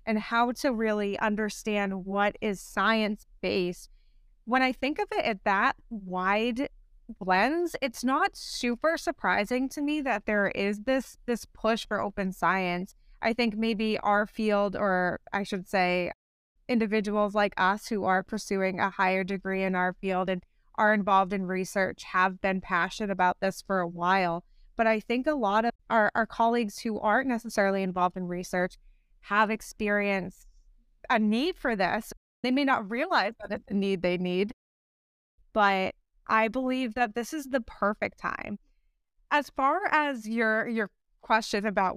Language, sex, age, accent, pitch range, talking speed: English, female, 20-39, American, 195-245 Hz, 165 wpm